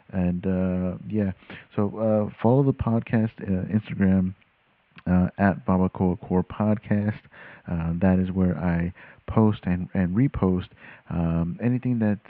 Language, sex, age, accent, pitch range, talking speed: English, male, 50-69, American, 90-105 Hz, 135 wpm